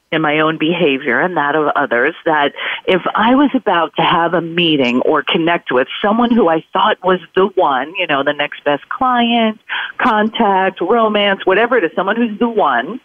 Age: 40-59